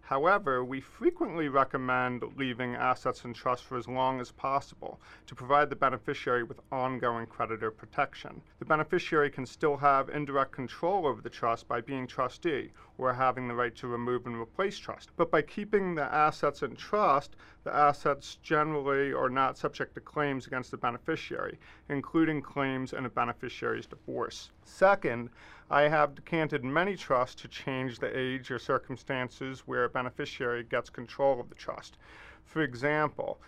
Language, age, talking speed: English, 40-59, 160 wpm